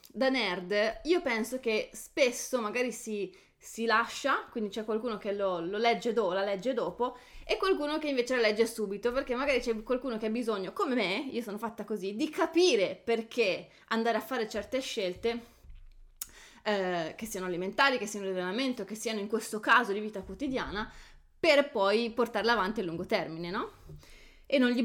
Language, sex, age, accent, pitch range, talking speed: Italian, female, 20-39, native, 200-250 Hz, 185 wpm